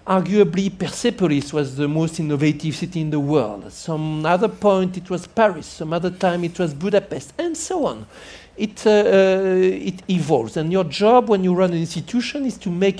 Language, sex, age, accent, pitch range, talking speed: English, male, 50-69, French, 155-215 Hz, 180 wpm